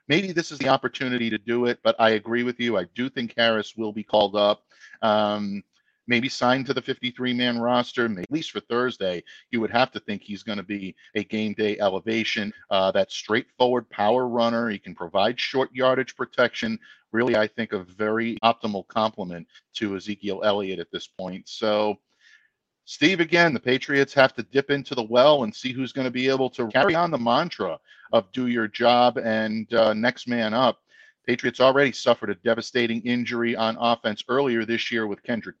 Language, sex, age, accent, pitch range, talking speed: English, male, 50-69, American, 105-125 Hz, 190 wpm